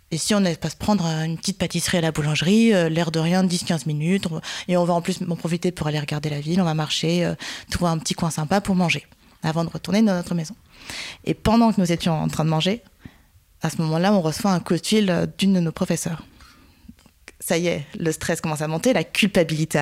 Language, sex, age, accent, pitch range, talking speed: French, female, 20-39, French, 160-195 Hz, 240 wpm